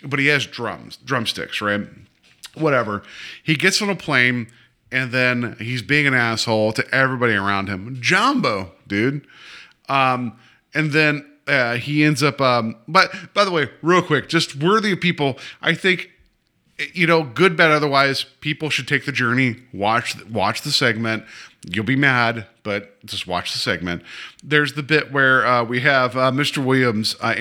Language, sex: English, male